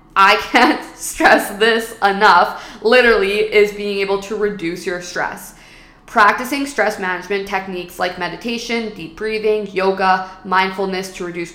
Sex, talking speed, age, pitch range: female, 130 wpm, 20-39, 185-220 Hz